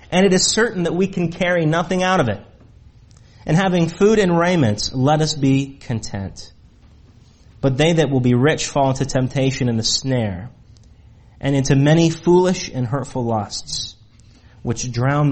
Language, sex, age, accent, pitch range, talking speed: English, male, 30-49, American, 105-145 Hz, 165 wpm